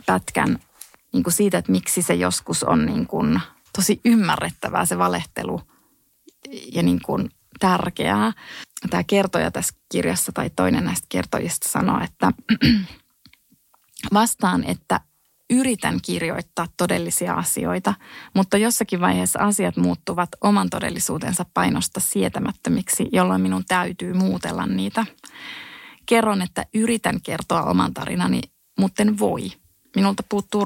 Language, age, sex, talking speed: Finnish, 20-39, female, 115 wpm